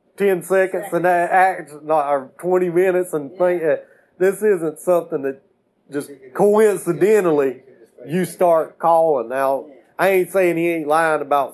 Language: English